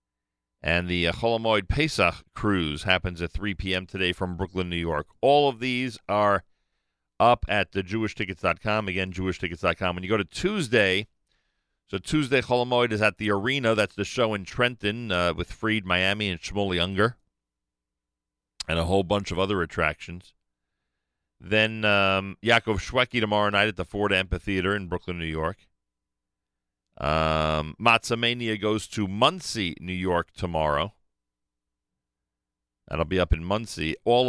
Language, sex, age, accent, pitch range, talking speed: English, male, 40-59, American, 80-105 Hz, 150 wpm